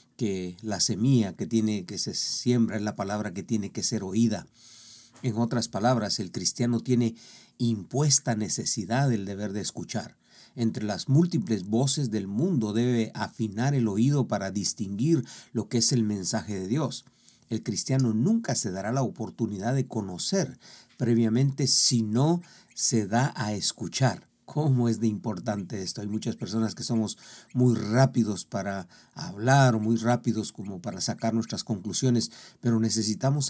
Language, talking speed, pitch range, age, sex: Spanish, 155 wpm, 110-130 Hz, 50-69, male